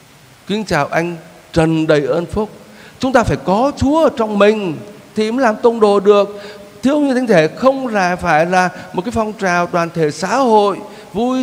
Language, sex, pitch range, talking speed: Vietnamese, male, 160-225 Hz, 200 wpm